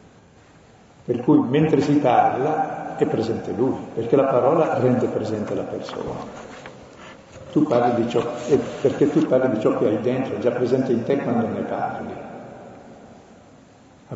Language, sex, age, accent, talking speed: Italian, male, 50-69, native, 150 wpm